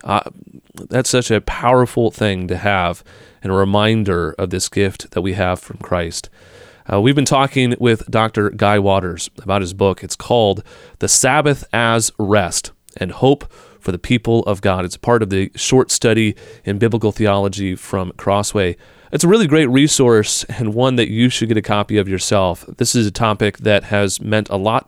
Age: 30-49